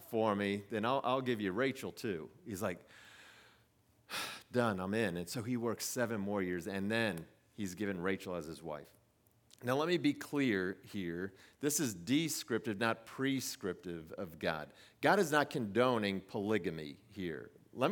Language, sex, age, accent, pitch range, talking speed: English, male, 40-59, American, 110-155 Hz, 165 wpm